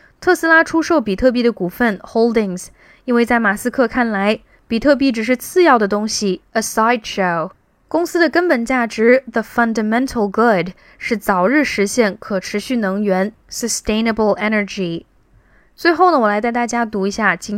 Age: 10-29